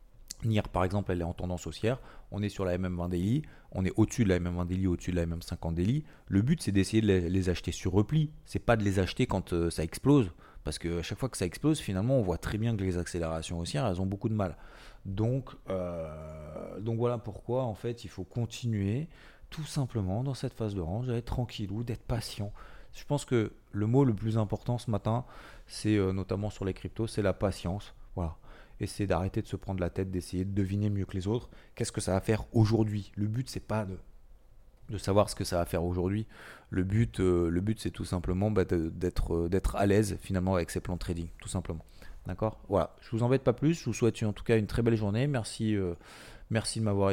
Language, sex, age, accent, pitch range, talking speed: French, male, 30-49, French, 90-115 Hz, 240 wpm